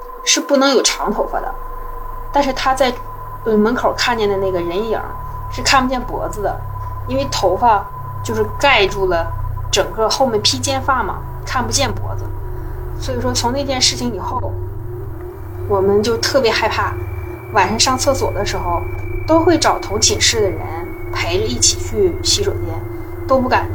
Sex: female